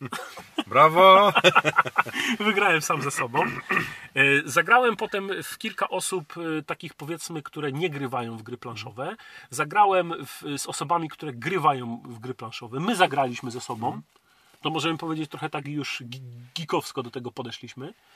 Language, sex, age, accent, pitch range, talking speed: Polish, male, 40-59, native, 135-190 Hz, 135 wpm